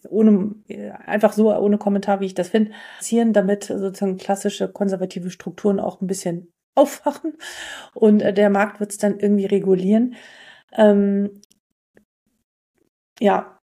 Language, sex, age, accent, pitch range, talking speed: German, female, 40-59, German, 195-220 Hz, 125 wpm